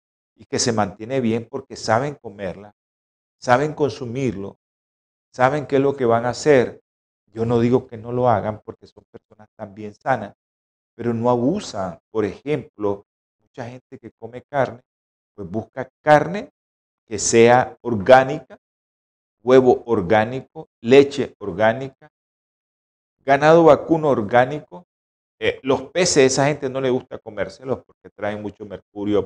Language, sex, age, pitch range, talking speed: Spanish, male, 50-69, 105-140 Hz, 135 wpm